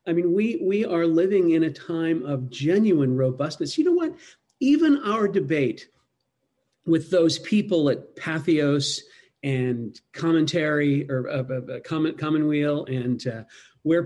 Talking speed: 140 wpm